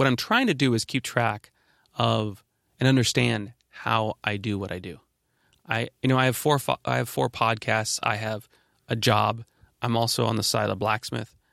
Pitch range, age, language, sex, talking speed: 105-125 Hz, 30-49, English, male, 205 wpm